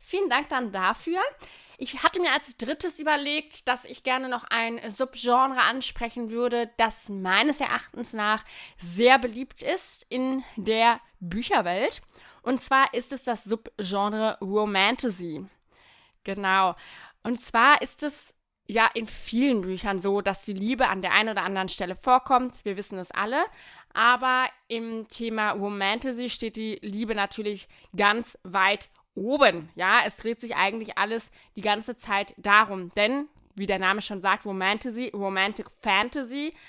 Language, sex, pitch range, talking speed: German, female, 205-255 Hz, 145 wpm